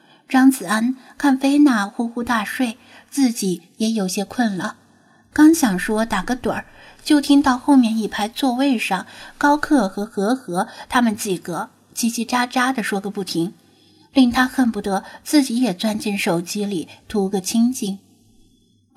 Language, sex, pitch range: Chinese, female, 195-250 Hz